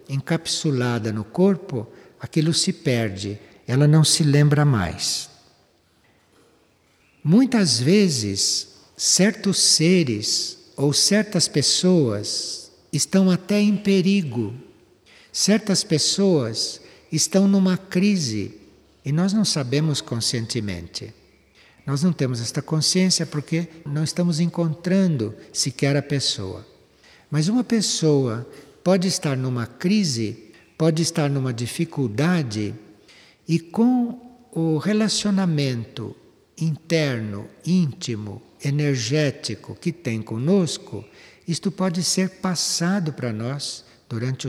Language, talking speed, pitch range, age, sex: Portuguese, 95 wpm, 120-180 Hz, 60-79, male